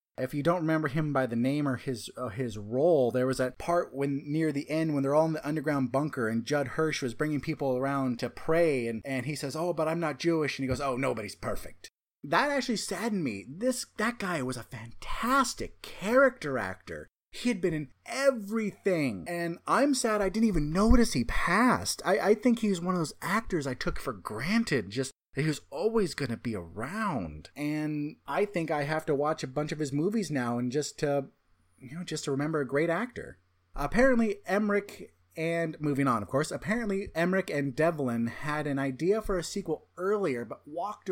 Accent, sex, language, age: American, male, English, 30-49